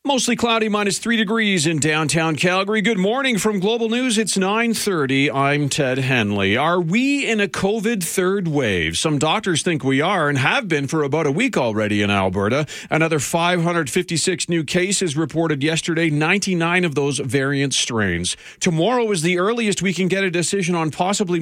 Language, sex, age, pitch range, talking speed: English, male, 40-59, 140-185 Hz, 175 wpm